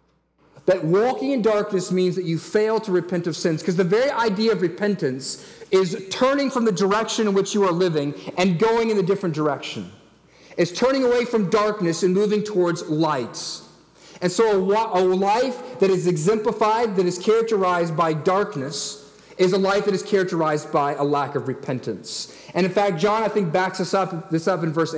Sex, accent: male, American